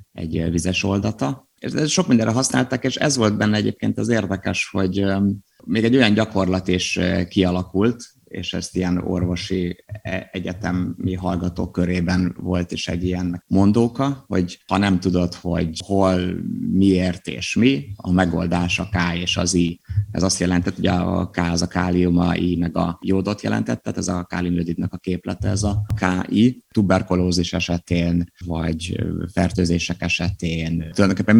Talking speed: 150 wpm